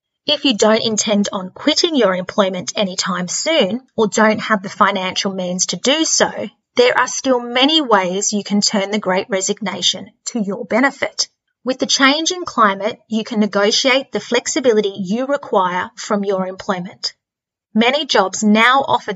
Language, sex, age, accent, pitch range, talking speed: English, female, 30-49, Australian, 200-265 Hz, 165 wpm